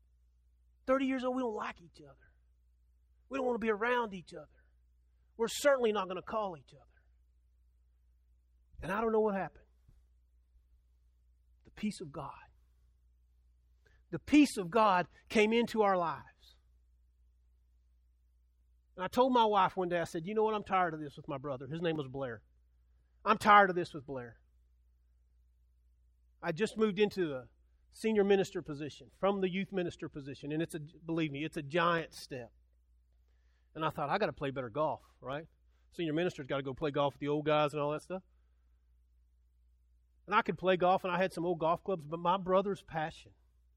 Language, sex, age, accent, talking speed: English, male, 40-59, American, 185 wpm